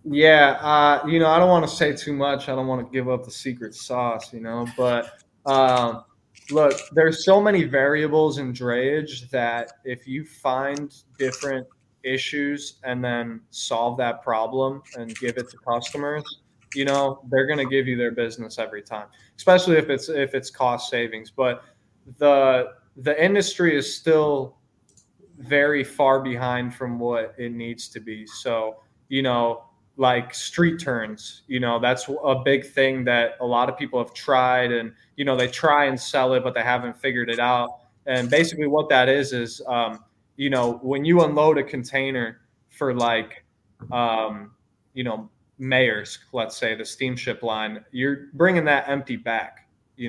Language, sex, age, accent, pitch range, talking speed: English, male, 20-39, American, 115-140 Hz, 175 wpm